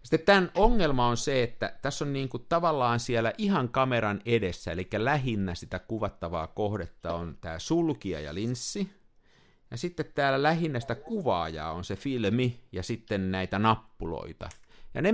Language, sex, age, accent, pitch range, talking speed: Finnish, male, 50-69, native, 100-140 Hz, 160 wpm